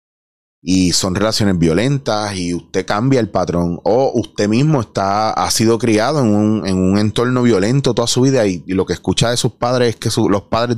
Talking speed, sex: 210 wpm, male